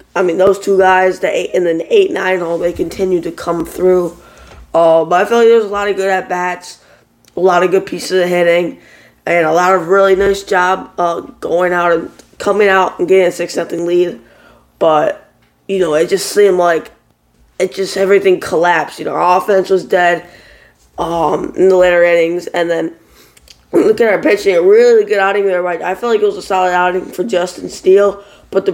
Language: English